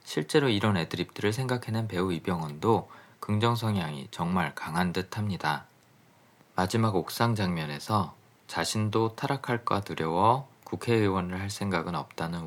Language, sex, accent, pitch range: Korean, male, native, 90-115 Hz